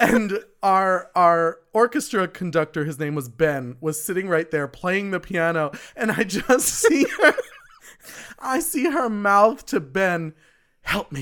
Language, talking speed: English, 155 wpm